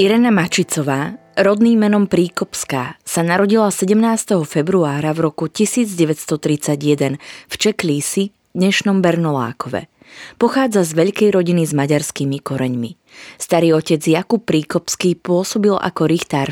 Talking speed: 110 wpm